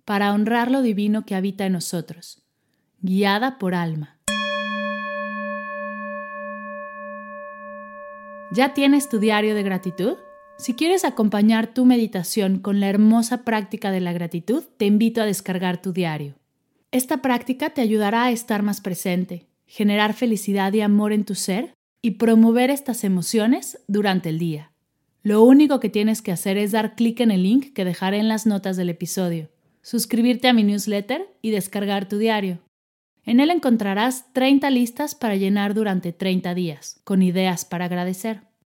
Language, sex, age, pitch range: Spanish, female, 30-49, 185-240 Hz